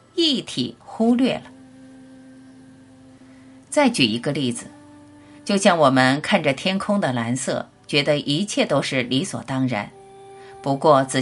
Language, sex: Chinese, female